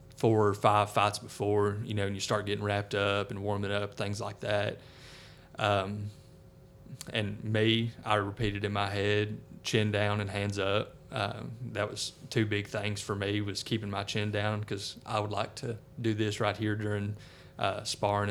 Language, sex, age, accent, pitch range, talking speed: English, male, 30-49, American, 100-115 Hz, 185 wpm